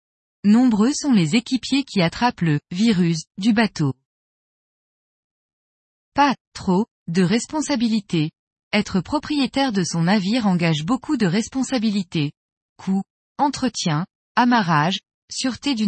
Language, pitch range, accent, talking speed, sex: French, 180-250 Hz, French, 120 wpm, female